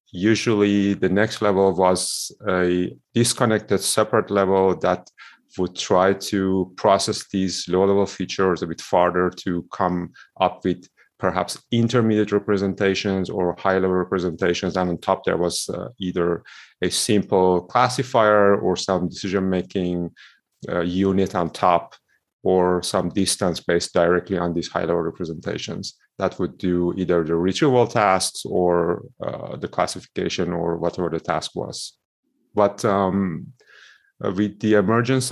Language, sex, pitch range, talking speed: English, male, 90-100 Hz, 135 wpm